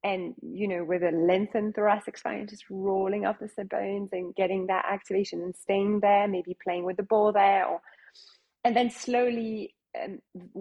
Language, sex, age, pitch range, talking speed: English, female, 30-49, 185-225 Hz, 180 wpm